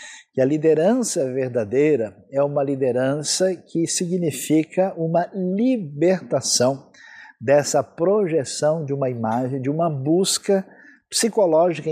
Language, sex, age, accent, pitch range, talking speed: Portuguese, male, 50-69, Brazilian, 130-170 Hz, 100 wpm